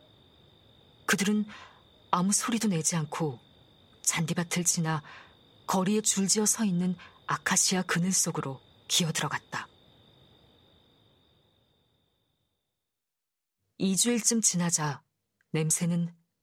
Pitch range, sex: 165-210 Hz, female